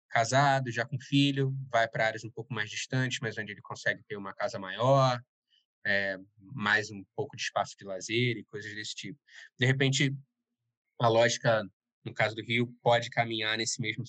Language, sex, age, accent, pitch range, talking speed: Portuguese, male, 20-39, Brazilian, 115-140 Hz, 185 wpm